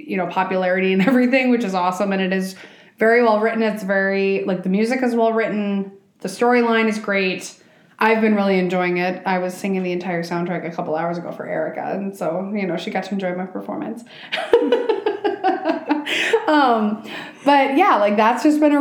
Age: 20-39